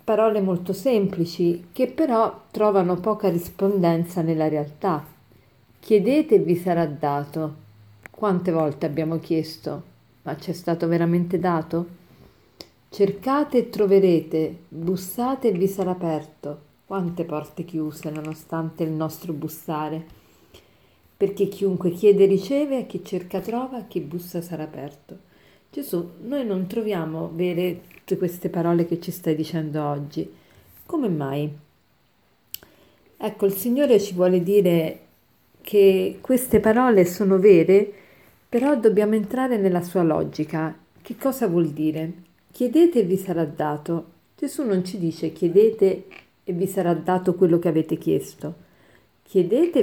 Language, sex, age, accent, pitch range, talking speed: Italian, female, 40-59, native, 160-205 Hz, 125 wpm